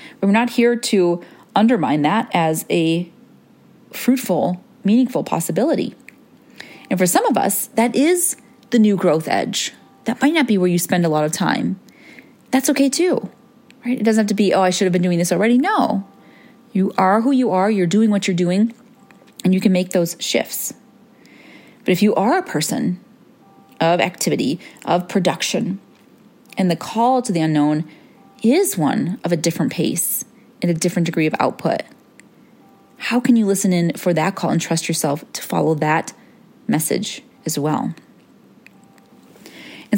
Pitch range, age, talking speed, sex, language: 180-245 Hz, 30-49, 170 wpm, female, English